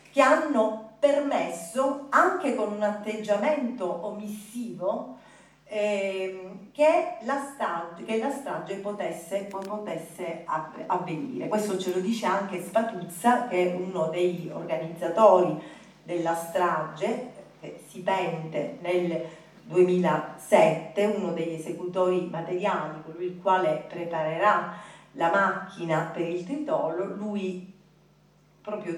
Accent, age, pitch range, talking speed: native, 40-59, 170-220 Hz, 105 wpm